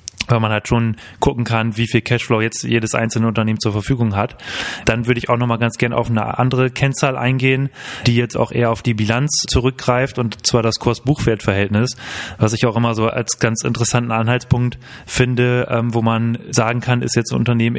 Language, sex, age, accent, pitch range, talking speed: German, male, 30-49, German, 115-125 Hz, 195 wpm